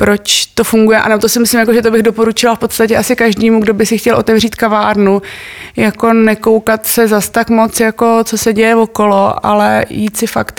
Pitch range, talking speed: 200-220 Hz, 205 wpm